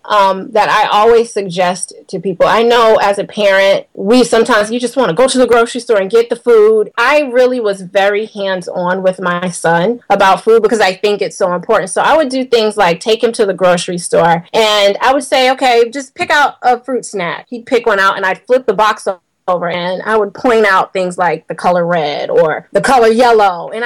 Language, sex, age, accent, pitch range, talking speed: English, female, 30-49, American, 185-245 Hz, 230 wpm